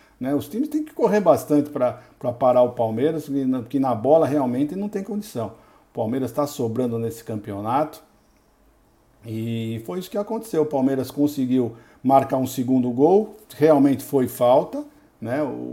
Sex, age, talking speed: male, 60-79, 160 wpm